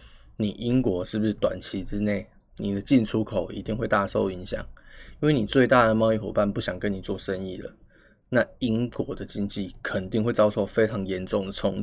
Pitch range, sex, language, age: 100-130 Hz, male, Chinese, 20-39